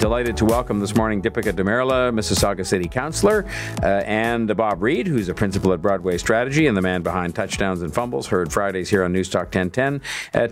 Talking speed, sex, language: 195 wpm, male, English